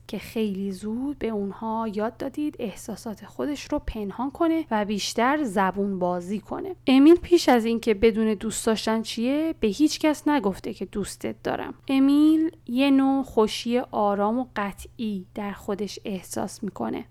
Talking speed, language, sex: 150 wpm, Persian, female